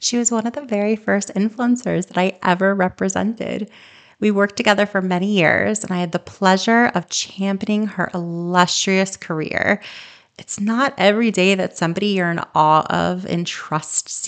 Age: 30-49